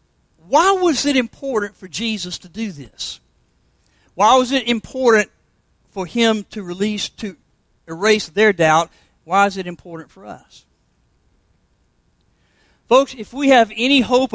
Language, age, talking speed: English, 50-69, 140 wpm